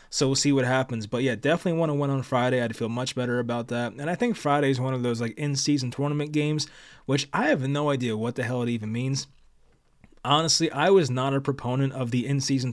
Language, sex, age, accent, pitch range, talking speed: English, male, 20-39, American, 120-145 Hz, 235 wpm